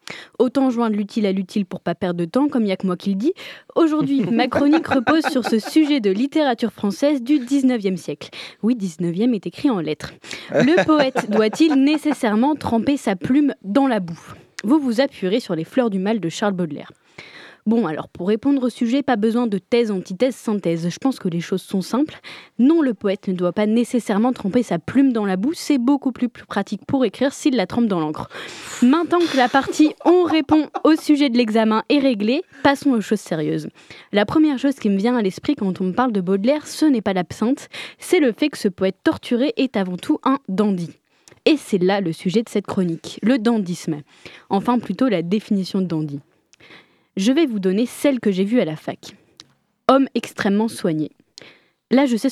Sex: female